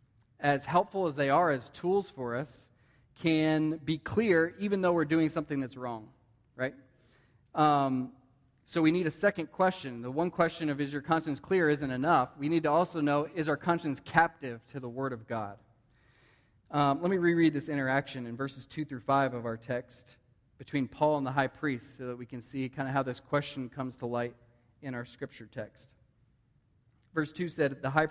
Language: English